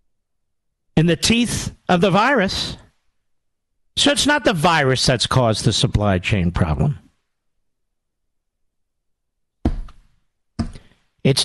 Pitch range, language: 110-165 Hz, English